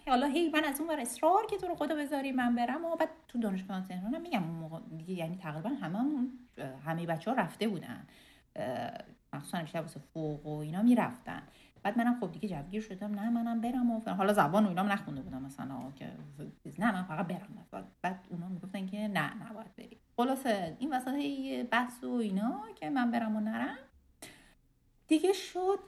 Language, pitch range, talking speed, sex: Persian, 175-245 Hz, 185 wpm, female